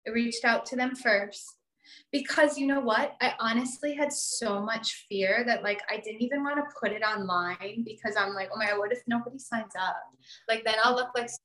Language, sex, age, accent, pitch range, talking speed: English, female, 20-39, American, 195-240 Hz, 220 wpm